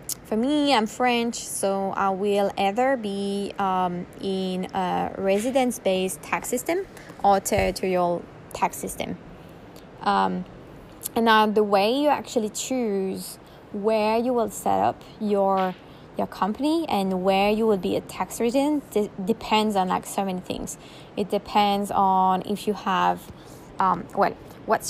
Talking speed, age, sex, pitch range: 140 wpm, 20-39, female, 185-215 Hz